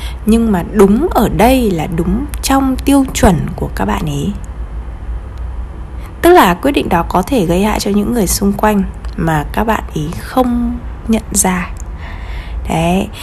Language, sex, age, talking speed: Vietnamese, female, 20-39, 165 wpm